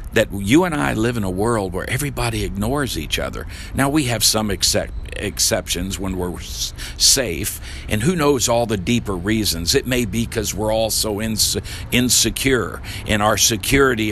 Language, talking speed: English, 165 wpm